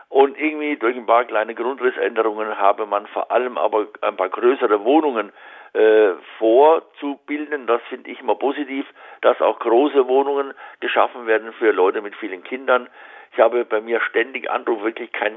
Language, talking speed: German, 165 wpm